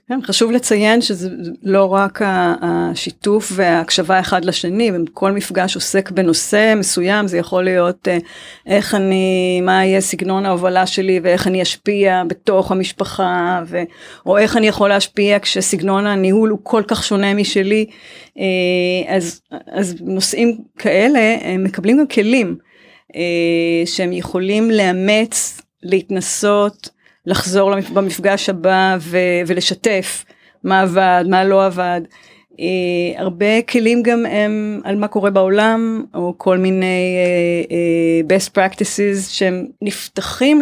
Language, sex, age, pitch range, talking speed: Hebrew, female, 30-49, 180-210 Hz, 115 wpm